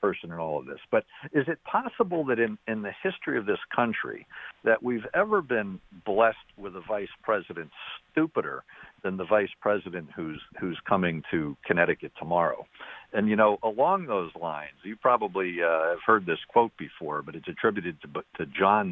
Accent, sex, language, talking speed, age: American, male, English, 180 wpm, 50-69